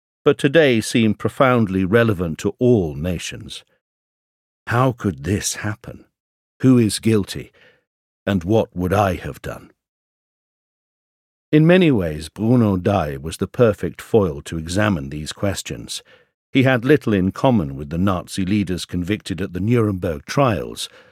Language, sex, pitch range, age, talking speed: English, male, 90-120 Hz, 60-79, 135 wpm